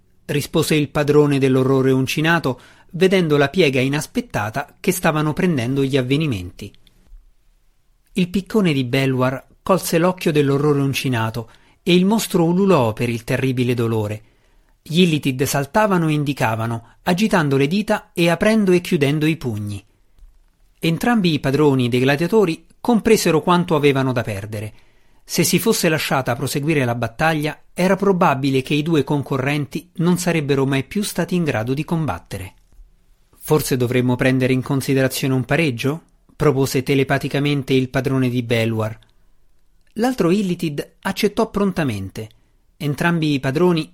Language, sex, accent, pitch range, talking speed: Italian, male, native, 125-170 Hz, 130 wpm